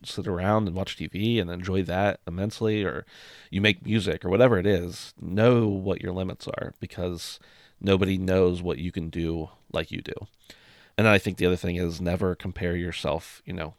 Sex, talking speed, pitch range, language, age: male, 190 wpm, 85-100 Hz, English, 30-49